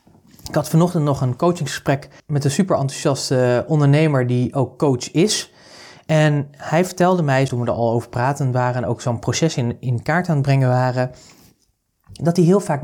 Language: Dutch